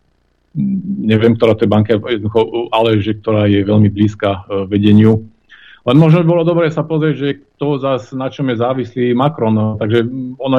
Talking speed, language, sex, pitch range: 155 wpm, Slovak, male, 100-120 Hz